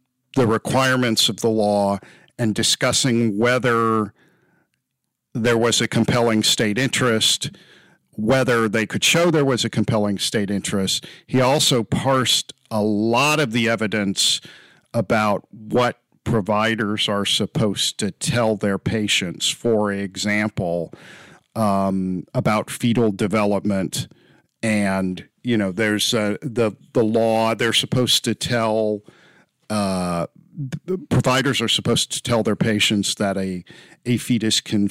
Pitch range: 105-120 Hz